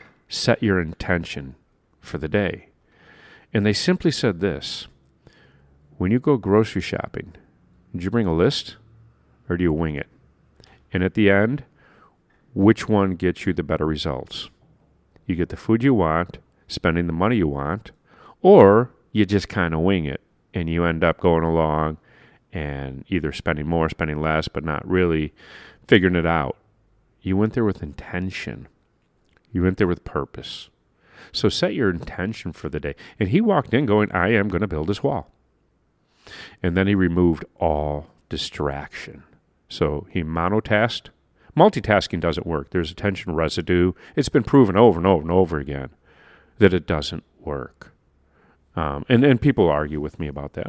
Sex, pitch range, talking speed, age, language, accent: male, 80-105 Hz, 165 wpm, 40-59, English, American